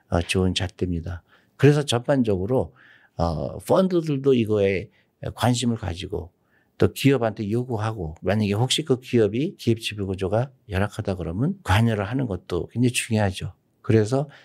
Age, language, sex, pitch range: 50-69, Korean, male, 90-125 Hz